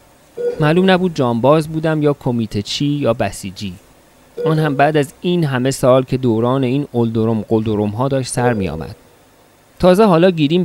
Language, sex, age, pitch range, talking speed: Persian, male, 40-59, 115-155 Hz, 165 wpm